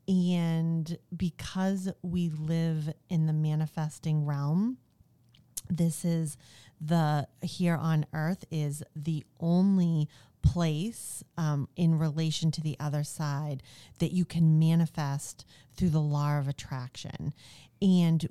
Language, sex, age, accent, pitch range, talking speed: English, female, 40-59, American, 145-170 Hz, 115 wpm